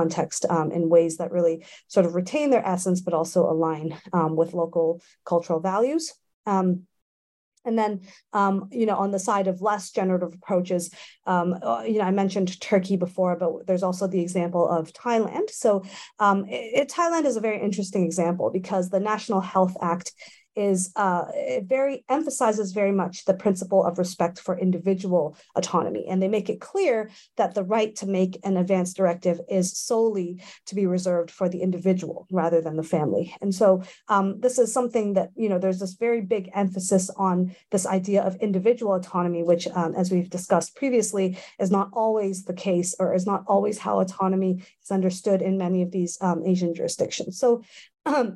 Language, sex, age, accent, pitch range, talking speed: English, female, 40-59, American, 180-210 Hz, 180 wpm